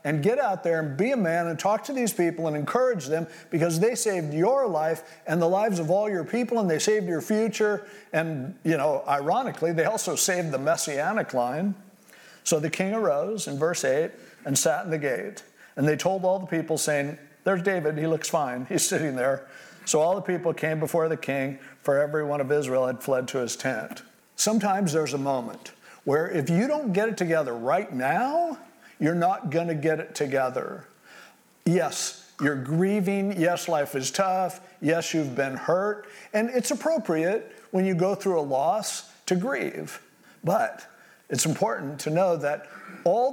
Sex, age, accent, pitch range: male, 50-69, American, 155-200 Hz